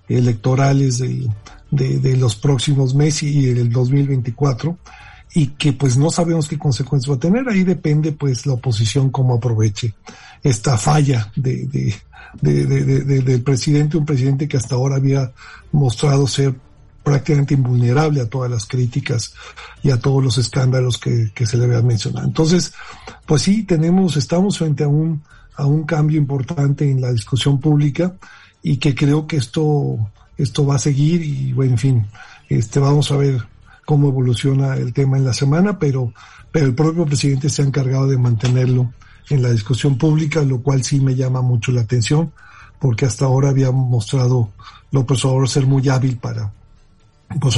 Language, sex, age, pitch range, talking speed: Spanish, male, 50-69, 120-145 Hz, 175 wpm